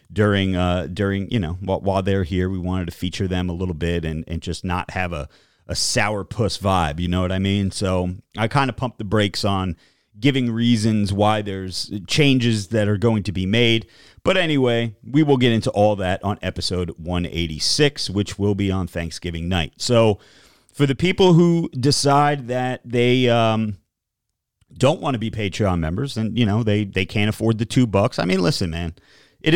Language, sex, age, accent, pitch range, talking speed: English, male, 40-59, American, 95-125 Hz, 195 wpm